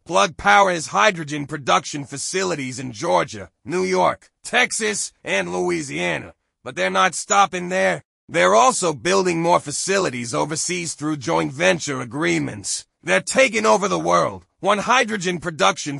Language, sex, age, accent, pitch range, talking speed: English, male, 30-49, American, 145-190 Hz, 135 wpm